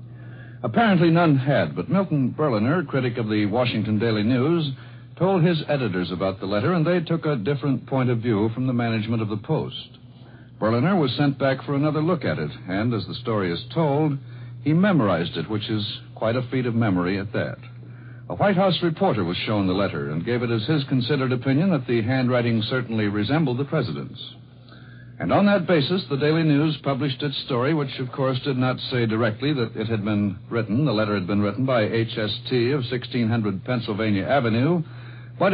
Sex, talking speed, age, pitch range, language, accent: male, 195 wpm, 60-79, 115-145 Hz, English, American